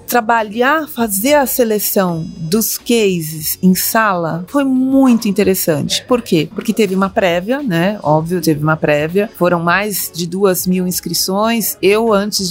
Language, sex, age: English, female, 30-49